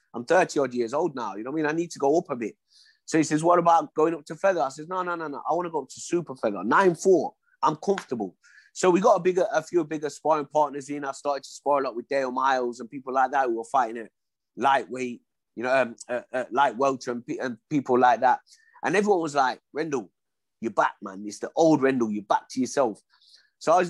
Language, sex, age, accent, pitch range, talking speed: English, male, 30-49, British, 130-185 Hz, 265 wpm